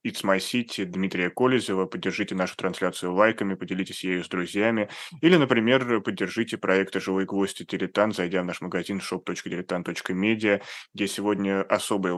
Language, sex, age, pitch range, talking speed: Russian, male, 20-39, 95-110 Hz, 140 wpm